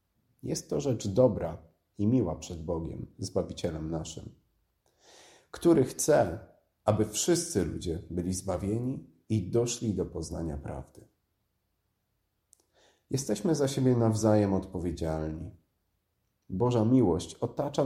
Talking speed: 100 wpm